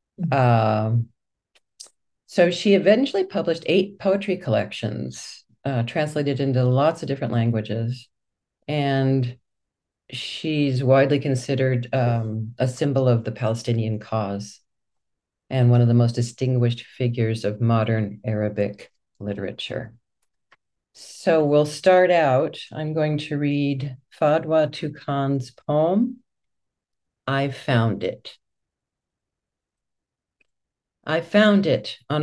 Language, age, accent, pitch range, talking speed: English, 50-69, American, 115-155 Hz, 100 wpm